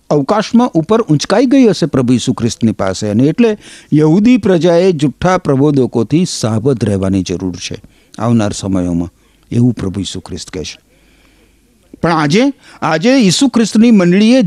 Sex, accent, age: male, native, 50-69